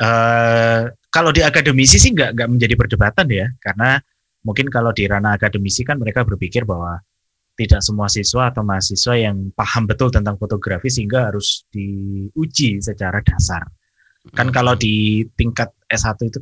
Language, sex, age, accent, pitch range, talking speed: Indonesian, male, 20-39, native, 105-135 Hz, 145 wpm